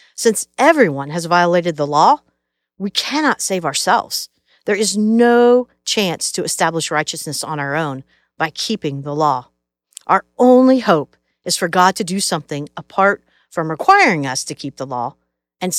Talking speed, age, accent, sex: 160 wpm, 50-69, American, female